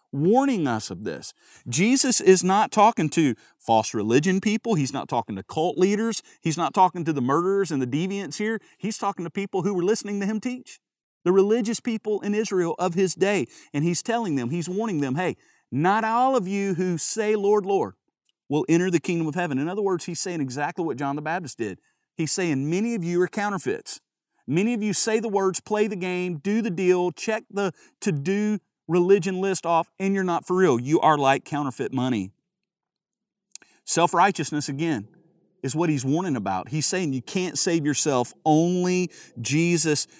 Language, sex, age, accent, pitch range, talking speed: English, male, 40-59, American, 150-205 Hz, 195 wpm